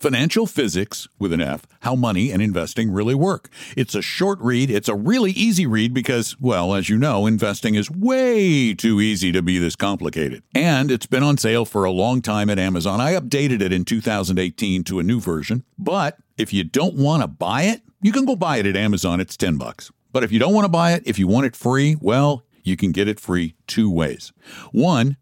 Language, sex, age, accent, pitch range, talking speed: English, male, 60-79, American, 100-135 Hz, 225 wpm